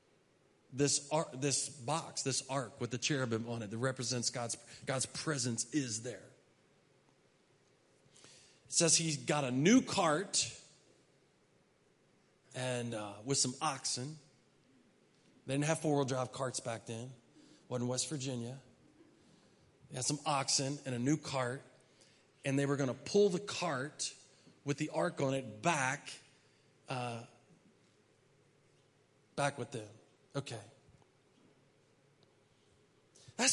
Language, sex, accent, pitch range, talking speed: English, male, American, 130-195 Hz, 125 wpm